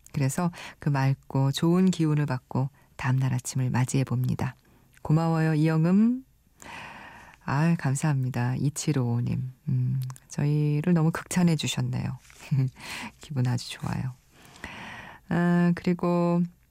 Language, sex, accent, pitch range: Korean, female, native, 135-190 Hz